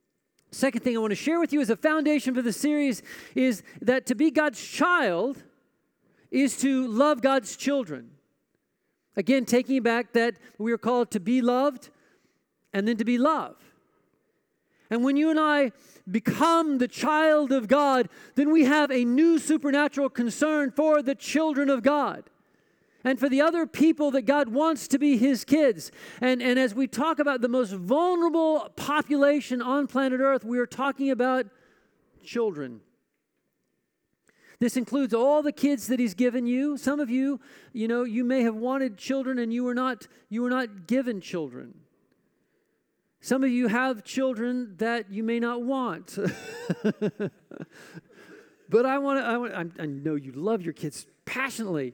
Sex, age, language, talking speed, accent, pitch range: male, 40-59, English, 165 wpm, American, 235-285 Hz